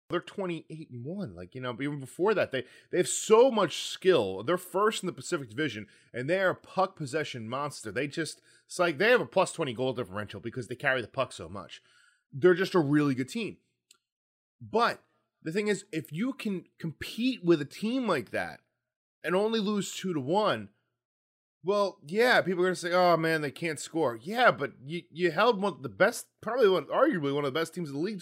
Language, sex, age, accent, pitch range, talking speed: English, male, 20-39, American, 135-190 Hz, 220 wpm